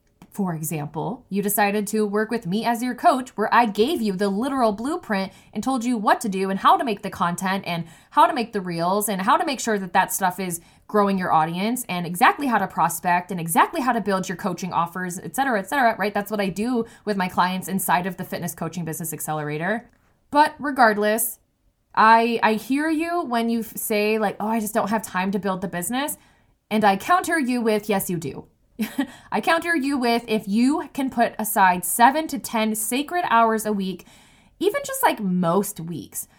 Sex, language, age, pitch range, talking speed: female, English, 20-39, 185-235 Hz, 215 wpm